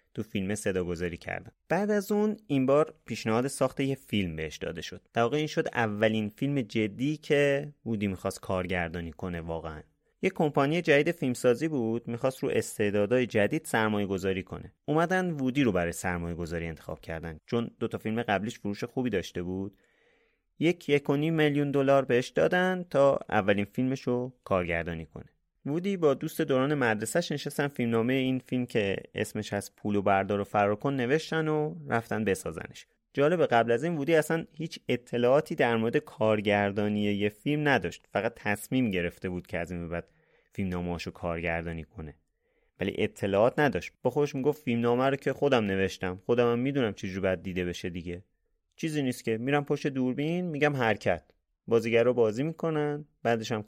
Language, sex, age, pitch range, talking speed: Persian, male, 30-49, 100-145 Hz, 160 wpm